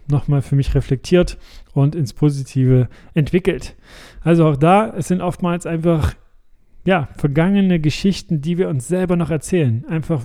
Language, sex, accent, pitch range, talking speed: German, male, German, 140-175 Hz, 145 wpm